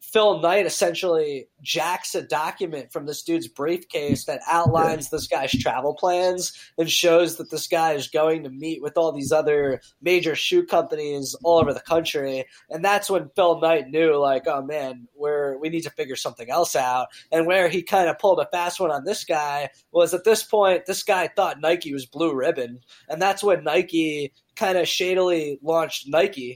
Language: English